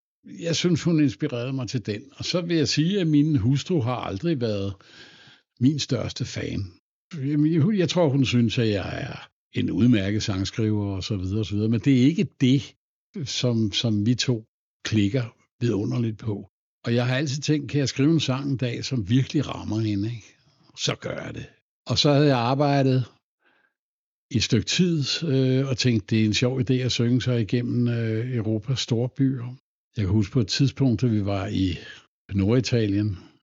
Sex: male